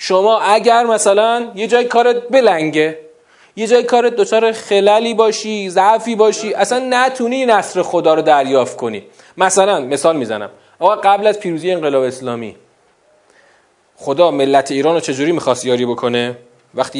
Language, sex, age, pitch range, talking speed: Persian, male, 30-49, 140-215 Hz, 140 wpm